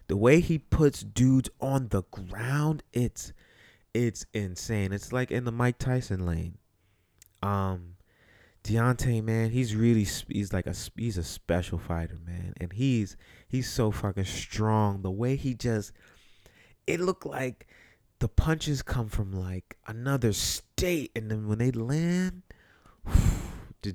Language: English